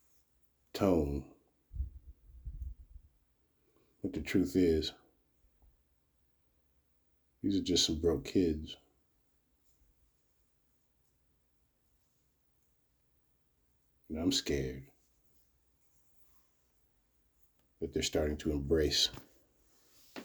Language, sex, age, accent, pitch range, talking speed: English, male, 60-79, American, 65-75 Hz, 55 wpm